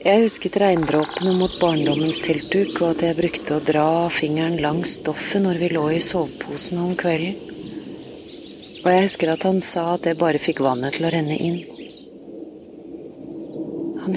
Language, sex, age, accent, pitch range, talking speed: Dutch, female, 30-49, Swedish, 165-200 Hz, 155 wpm